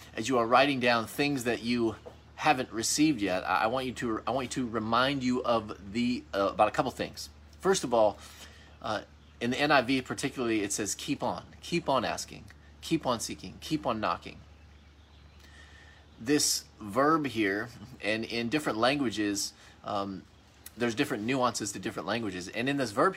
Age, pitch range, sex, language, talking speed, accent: 30-49, 100-135 Hz, male, English, 175 wpm, American